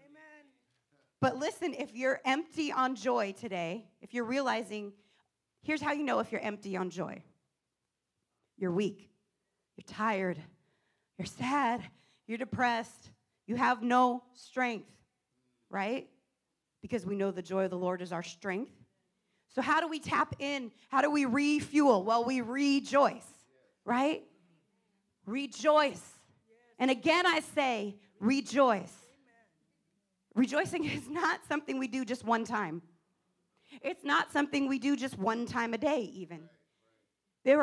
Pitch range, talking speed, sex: 195-260 Hz, 135 wpm, female